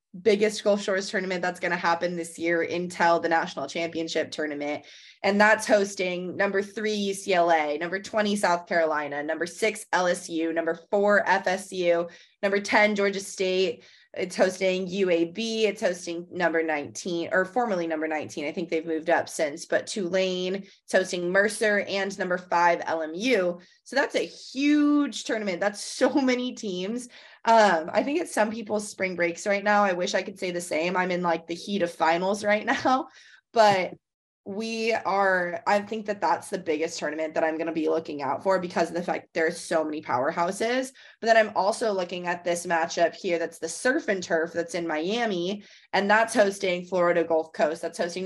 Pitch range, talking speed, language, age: 170-210 Hz, 185 wpm, English, 20-39